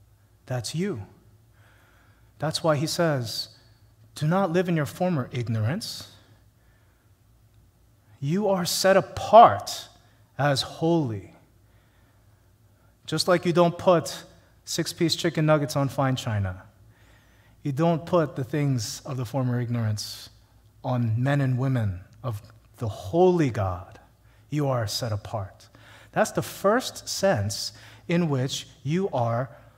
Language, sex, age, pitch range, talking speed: English, male, 30-49, 110-160 Hz, 120 wpm